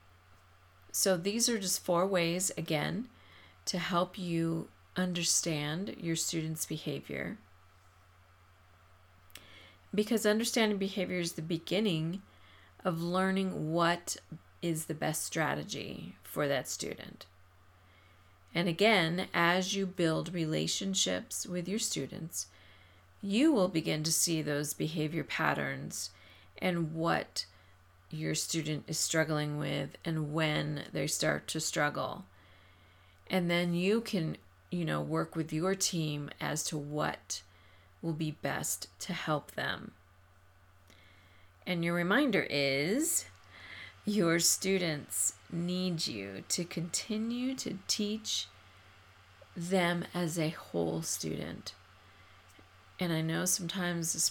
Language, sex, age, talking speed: English, female, 40-59, 110 wpm